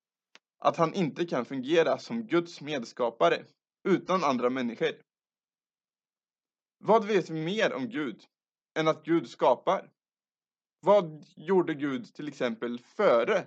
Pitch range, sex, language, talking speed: 130-195 Hz, male, Swedish, 120 wpm